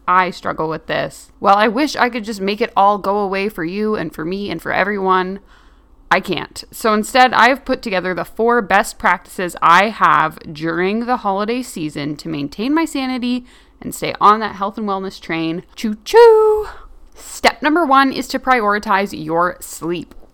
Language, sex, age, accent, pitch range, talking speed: English, female, 20-39, American, 180-245 Hz, 180 wpm